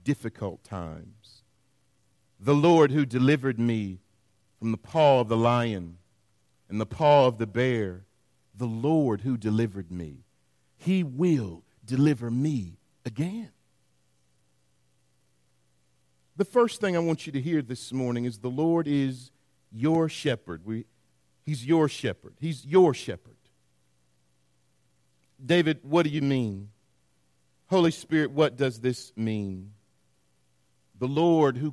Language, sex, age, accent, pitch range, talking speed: English, male, 50-69, American, 100-155 Hz, 125 wpm